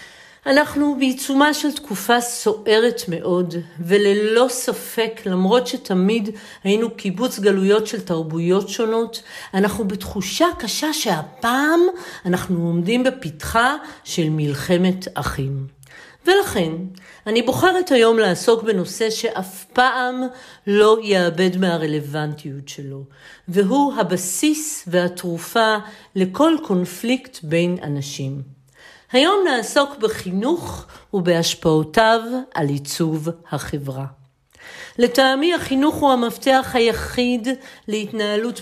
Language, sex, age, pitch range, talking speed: Hebrew, female, 50-69, 180-245 Hz, 90 wpm